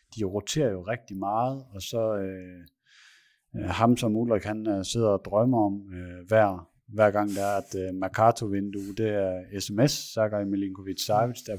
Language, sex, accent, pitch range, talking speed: Danish, male, native, 95-115 Hz, 165 wpm